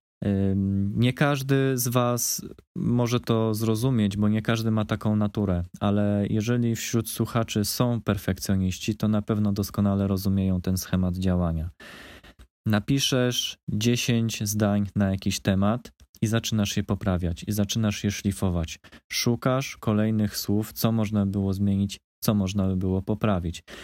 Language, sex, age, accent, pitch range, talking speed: Polish, male, 20-39, native, 95-120 Hz, 135 wpm